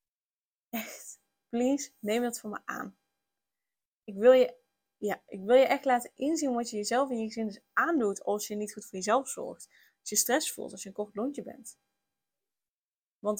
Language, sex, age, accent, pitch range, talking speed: Dutch, female, 10-29, Dutch, 195-245 Hz, 175 wpm